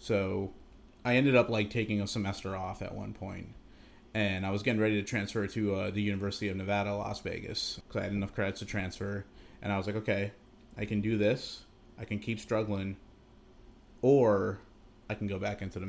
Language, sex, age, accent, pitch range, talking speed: English, male, 30-49, American, 100-110 Hz, 205 wpm